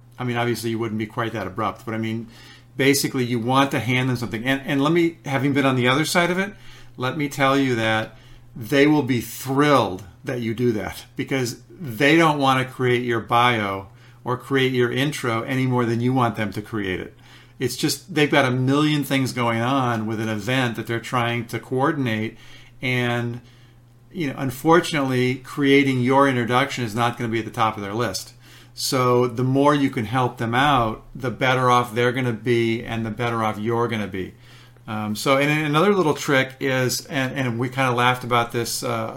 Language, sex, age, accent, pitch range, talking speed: English, male, 50-69, American, 115-135 Hz, 210 wpm